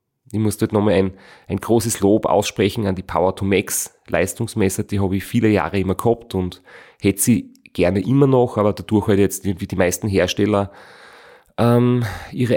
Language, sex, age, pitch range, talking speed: German, male, 30-49, 100-120 Hz, 160 wpm